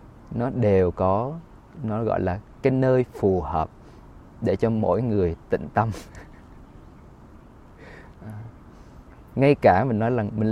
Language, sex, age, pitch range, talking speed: Vietnamese, male, 20-39, 95-125 Hz, 125 wpm